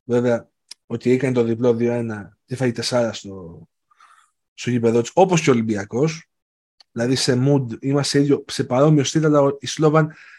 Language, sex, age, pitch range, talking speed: Greek, male, 30-49, 120-155 Hz, 145 wpm